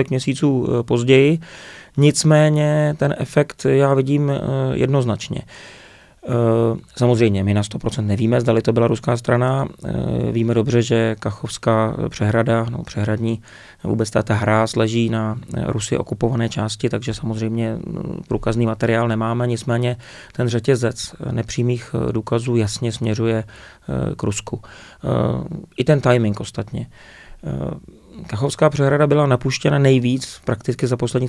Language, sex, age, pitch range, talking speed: Czech, male, 30-49, 115-135 Hz, 115 wpm